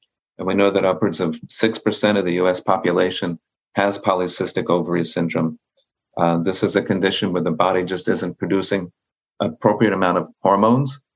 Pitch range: 90-100 Hz